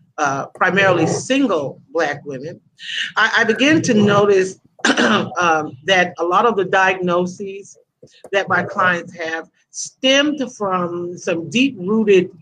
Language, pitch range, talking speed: English, 170-200 Hz, 120 wpm